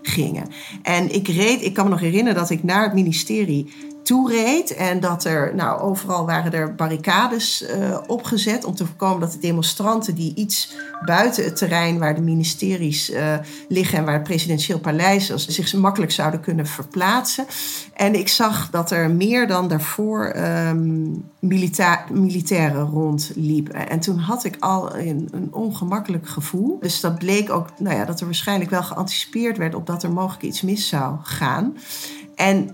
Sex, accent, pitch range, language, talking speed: female, Dutch, 160-205 Hz, Dutch, 165 wpm